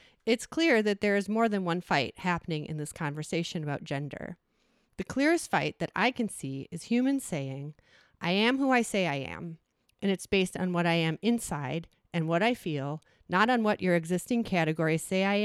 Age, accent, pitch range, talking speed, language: 30-49, American, 165-215 Hz, 200 wpm, English